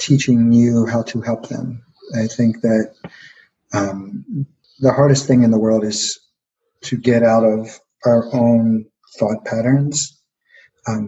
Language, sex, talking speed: English, male, 140 wpm